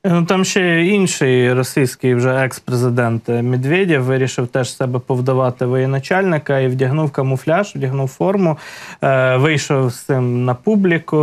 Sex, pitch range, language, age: male, 125-155 Hz, Ukrainian, 20-39